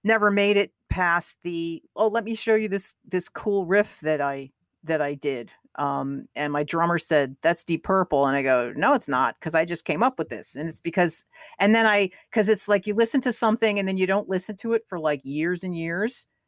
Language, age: English, 50-69